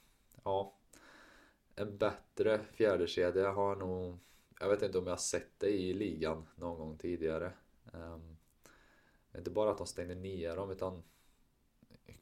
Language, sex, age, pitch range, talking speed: Swedish, male, 20-39, 80-100 Hz, 150 wpm